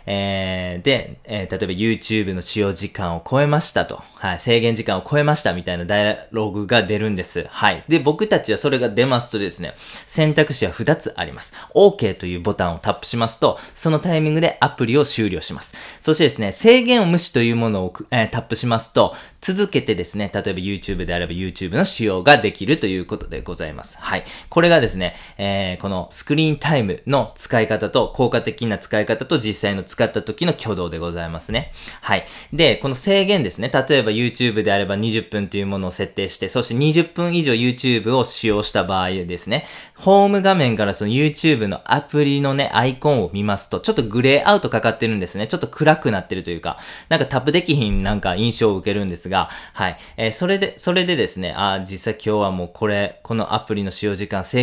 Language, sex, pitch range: Japanese, male, 100-145 Hz